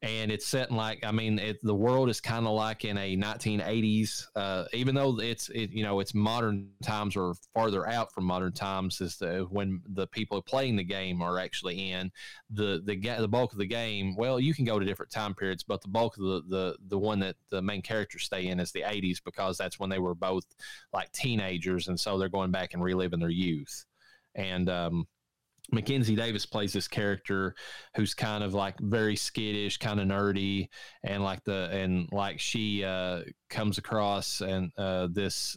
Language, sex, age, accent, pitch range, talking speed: English, male, 20-39, American, 95-110 Hz, 205 wpm